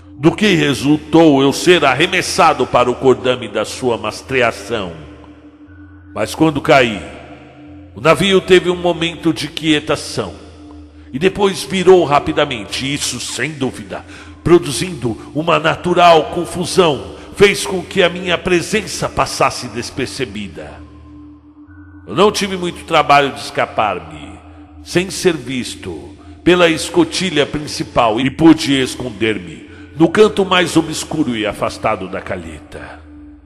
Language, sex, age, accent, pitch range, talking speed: Portuguese, male, 60-79, Brazilian, 100-165 Hz, 115 wpm